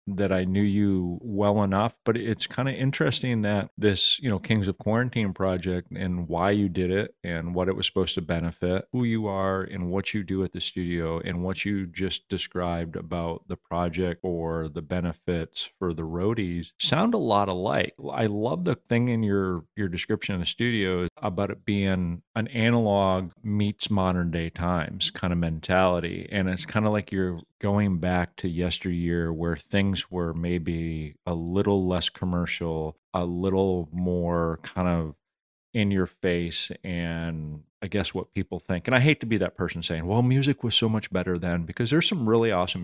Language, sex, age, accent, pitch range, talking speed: English, male, 30-49, American, 85-100 Hz, 190 wpm